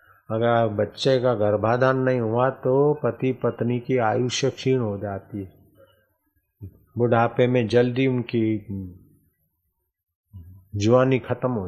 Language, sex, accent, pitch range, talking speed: Hindi, male, native, 105-135 Hz, 115 wpm